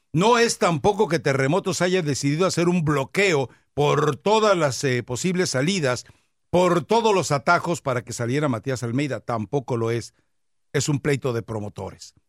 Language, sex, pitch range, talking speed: English, male, 130-175 Hz, 160 wpm